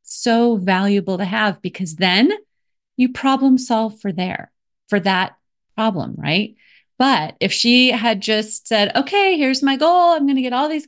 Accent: American